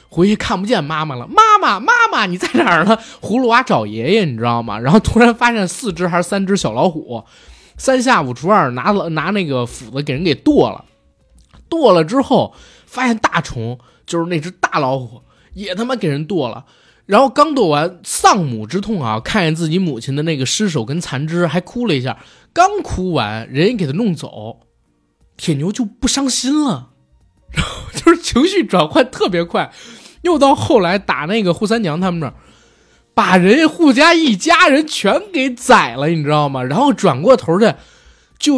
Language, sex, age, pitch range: Chinese, male, 20-39, 150-240 Hz